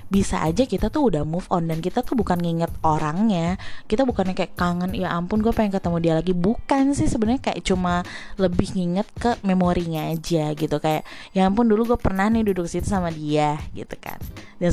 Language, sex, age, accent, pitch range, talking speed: Indonesian, female, 20-39, native, 155-210 Hz, 200 wpm